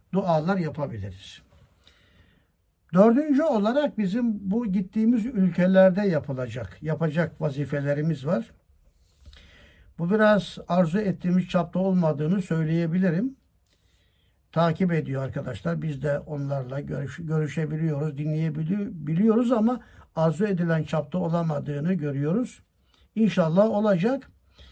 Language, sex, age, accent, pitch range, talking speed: Turkish, male, 60-79, native, 145-195 Hz, 85 wpm